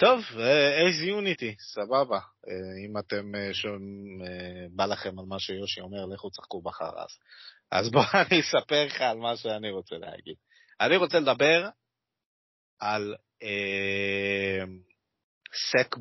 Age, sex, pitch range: 30-49, male, 100-150 Hz